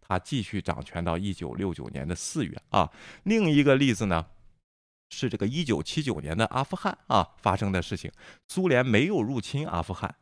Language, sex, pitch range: Chinese, male, 95-130 Hz